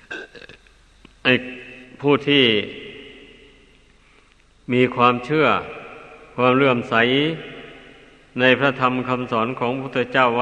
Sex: male